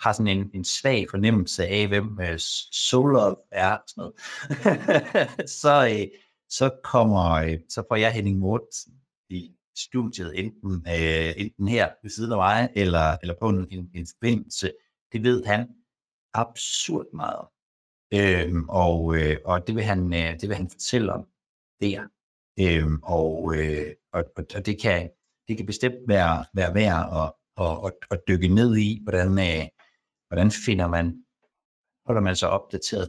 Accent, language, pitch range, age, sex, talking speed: native, Danish, 85-110 Hz, 60-79, male, 155 wpm